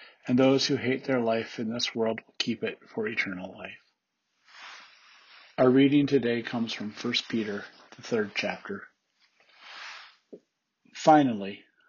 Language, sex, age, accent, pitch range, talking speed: English, male, 40-59, American, 115-140 Hz, 130 wpm